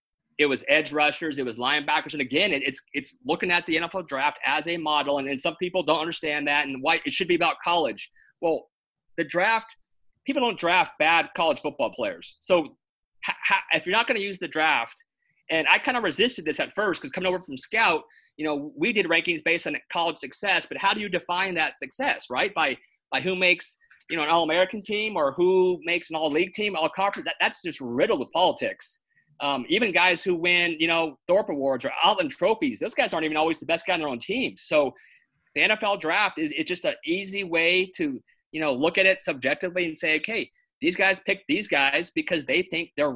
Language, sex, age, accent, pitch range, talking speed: English, male, 30-49, American, 160-210 Hz, 220 wpm